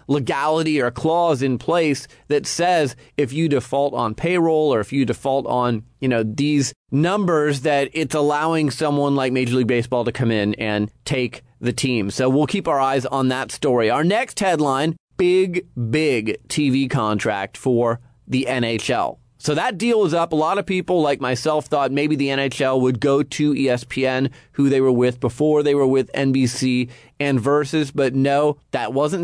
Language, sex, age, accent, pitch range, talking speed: English, male, 30-49, American, 130-170 Hz, 180 wpm